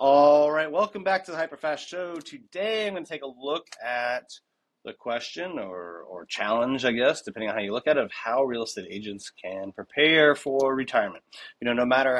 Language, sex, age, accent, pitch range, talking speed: English, male, 30-49, American, 110-150 Hz, 210 wpm